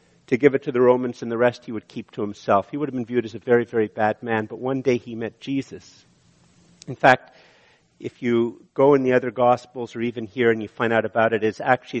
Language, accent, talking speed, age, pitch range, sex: English, American, 255 wpm, 50-69, 110-130 Hz, male